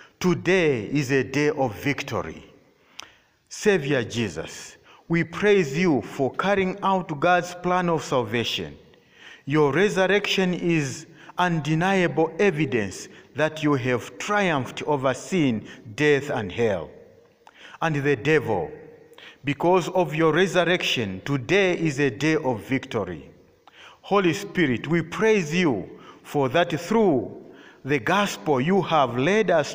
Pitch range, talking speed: 140-185 Hz, 120 wpm